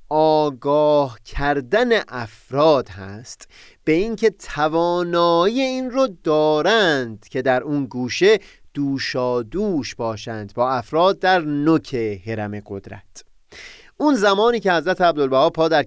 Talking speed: 115 wpm